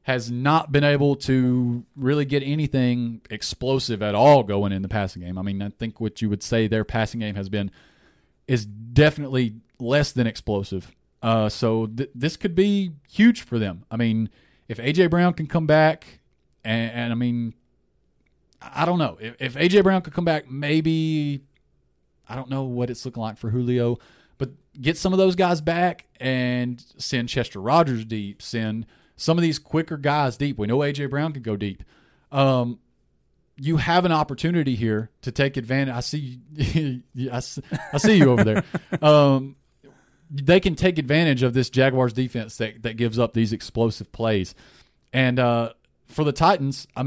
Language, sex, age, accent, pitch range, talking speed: English, male, 30-49, American, 115-145 Hz, 180 wpm